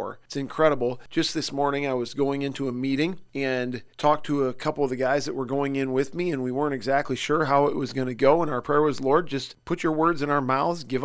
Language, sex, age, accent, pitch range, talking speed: English, male, 40-59, American, 130-150 Hz, 265 wpm